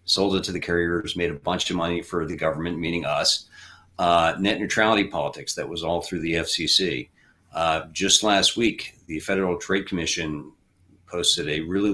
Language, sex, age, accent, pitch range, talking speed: English, male, 40-59, American, 85-95 Hz, 180 wpm